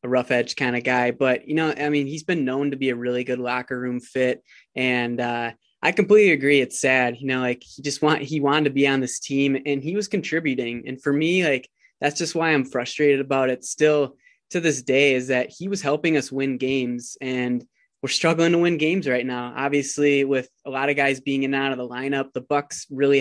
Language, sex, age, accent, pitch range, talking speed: English, male, 20-39, American, 125-140 Hz, 240 wpm